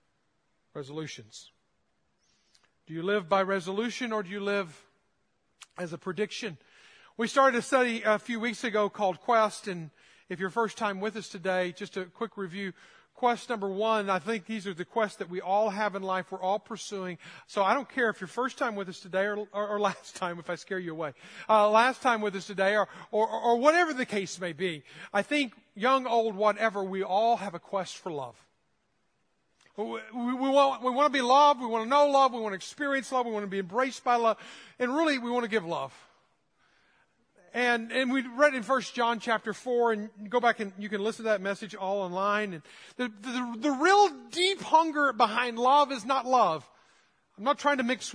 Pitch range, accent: 195-250 Hz, American